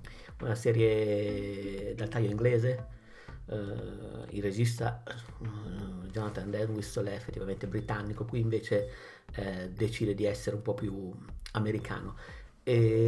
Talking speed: 110 wpm